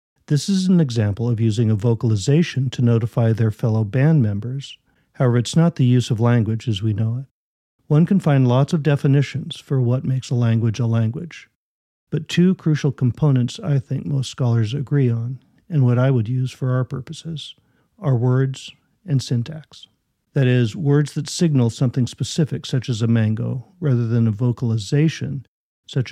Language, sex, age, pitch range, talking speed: English, male, 50-69, 120-145 Hz, 175 wpm